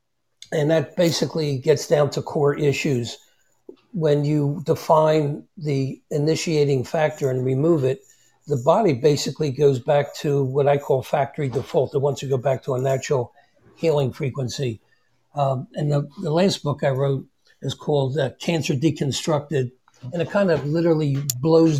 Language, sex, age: English, male, 60-79